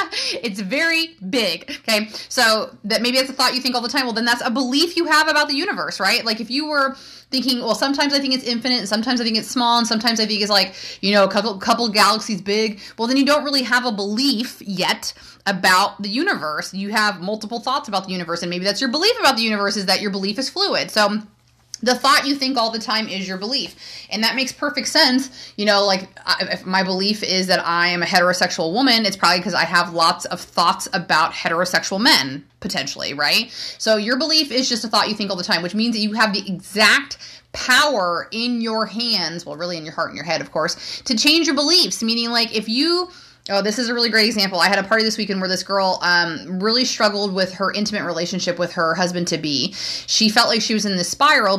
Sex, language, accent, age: female, English, American, 20-39